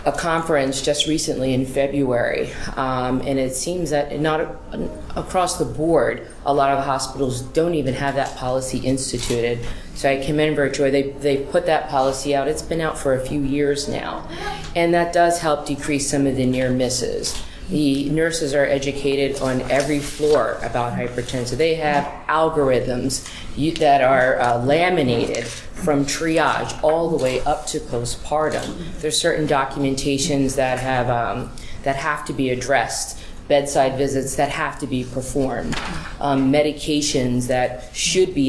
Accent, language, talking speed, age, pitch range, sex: American, English, 155 wpm, 40-59, 130-150 Hz, female